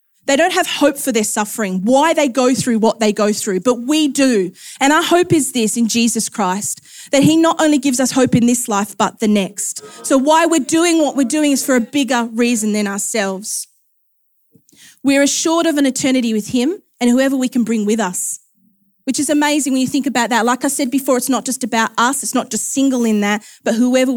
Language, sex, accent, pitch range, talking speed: English, female, Australian, 205-270 Hz, 230 wpm